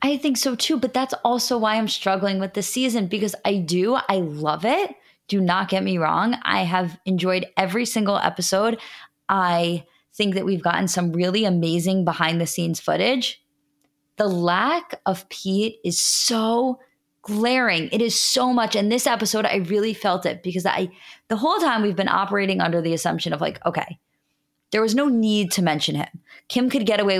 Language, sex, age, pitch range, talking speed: English, female, 20-39, 180-245 Hz, 190 wpm